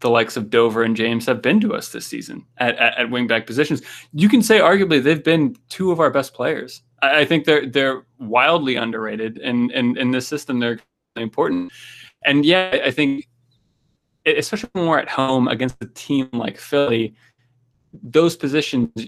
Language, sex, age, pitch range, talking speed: English, male, 20-39, 115-140 Hz, 180 wpm